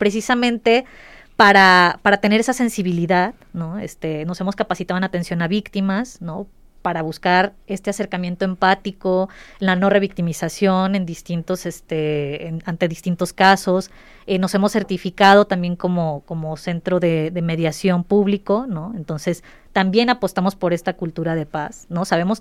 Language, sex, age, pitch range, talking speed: Spanish, female, 20-39, 175-215 Hz, 145 wpm